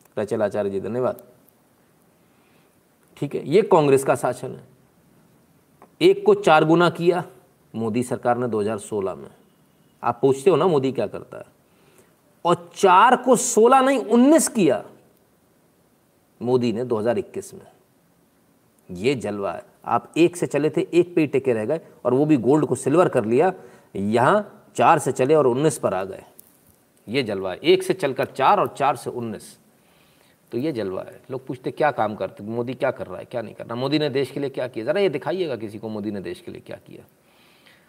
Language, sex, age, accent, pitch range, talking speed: Hindi, male, 40-59, native, 120-175 Hz, 185 wpm